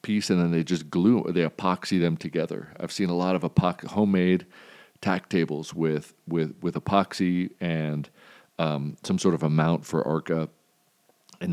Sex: male